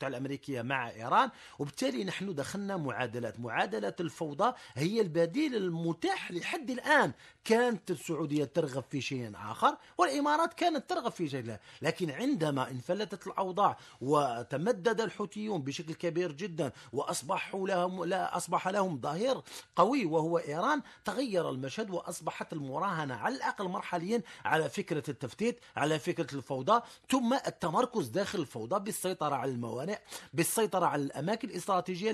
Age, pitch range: 40-59, 155-215 Hz